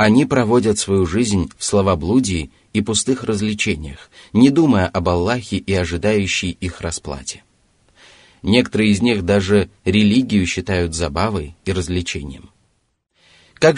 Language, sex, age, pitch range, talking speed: Russian, male, 30-49, 90-110 Hz, 120 wpm